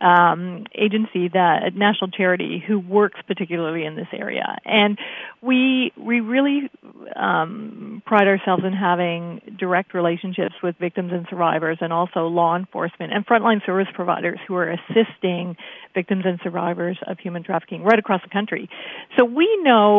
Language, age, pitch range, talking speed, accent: English, 50-69, 175-210 Hz, 155 wpm, American